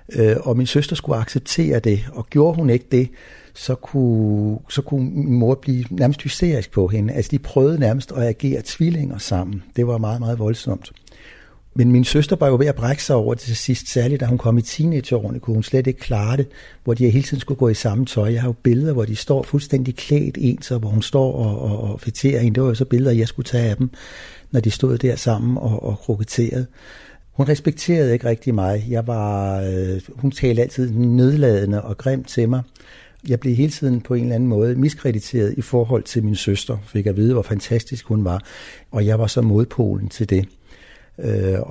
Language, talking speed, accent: Danish, 215 wpm, native